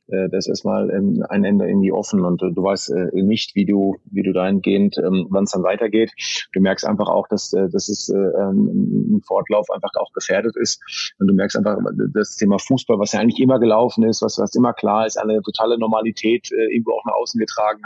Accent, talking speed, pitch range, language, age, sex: German, 200 wpm, 105-125 Hz, German, 30-49, male